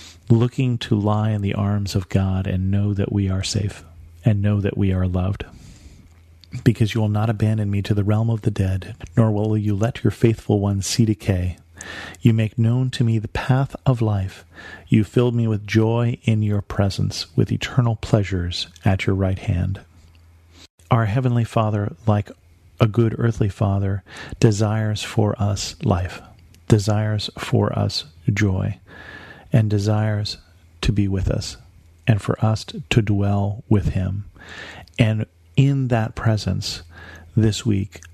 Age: 40-59